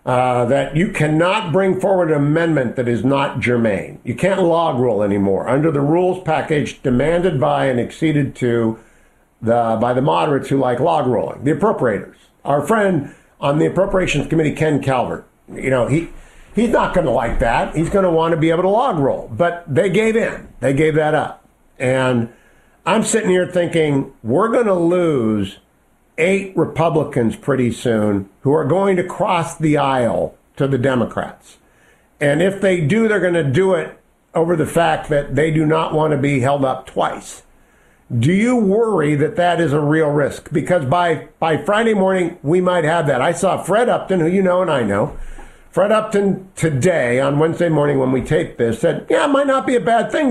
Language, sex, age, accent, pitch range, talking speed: English, male, 50-69, American, 135-185 Hz, 195 wpm